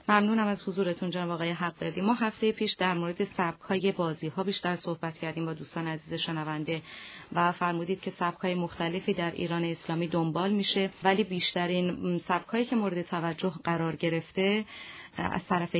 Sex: female